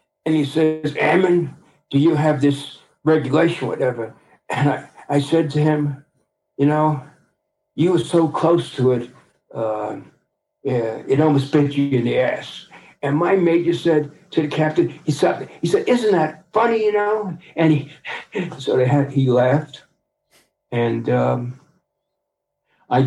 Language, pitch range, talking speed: English, 130-155 Hz, 155 wpm